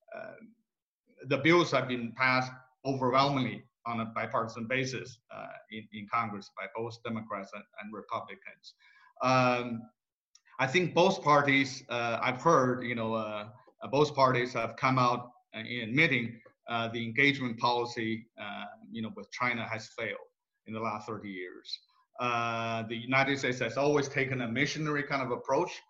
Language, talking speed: English, 155 wpm